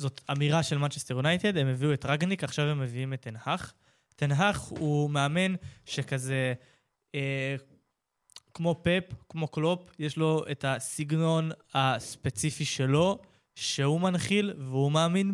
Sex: male